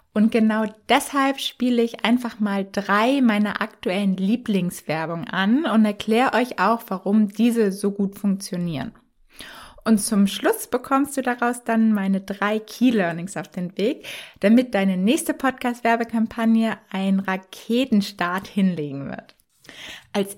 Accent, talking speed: German, 125 wpm